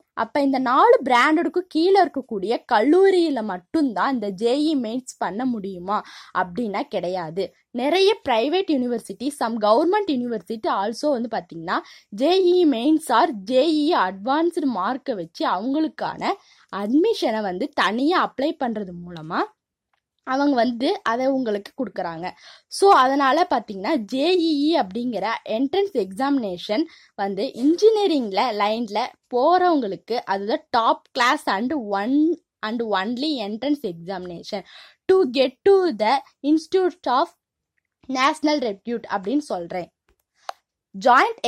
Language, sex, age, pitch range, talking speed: Tamil, female, 20-39, 215-310 Hz, 105 wpm